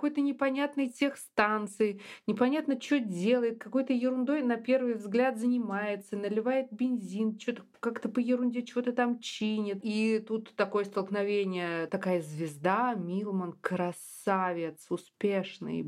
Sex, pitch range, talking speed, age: female, 185-230 Hz, 115 wpm, 20-39